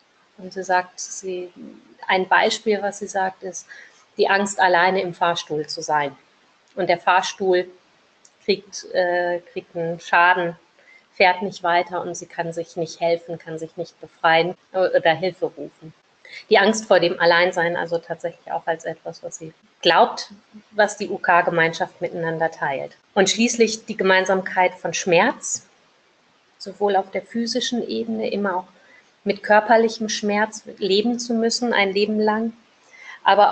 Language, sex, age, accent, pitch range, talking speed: German, female, 30-49, German, 170-200 Hz, 145 wpm